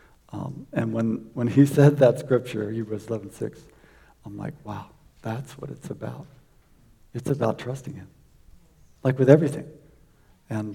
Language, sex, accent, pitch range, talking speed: English, male, American, 115-140 Hz, 145 wpm